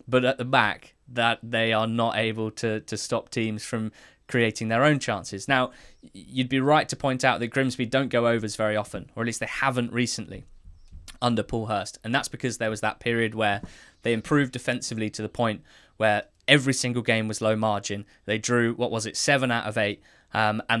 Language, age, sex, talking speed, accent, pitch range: English, 20-39, male, 210 wpm, British, 105-125 Hz